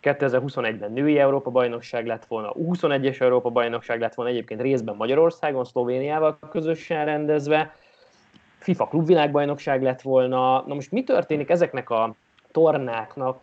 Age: 20-39